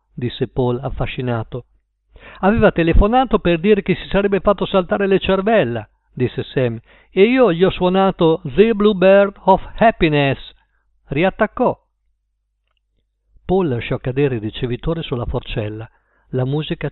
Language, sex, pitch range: Italian, male, 135-190 Hz